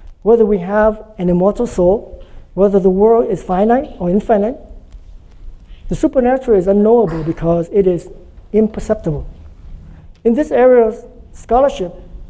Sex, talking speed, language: male, 120 wpm, English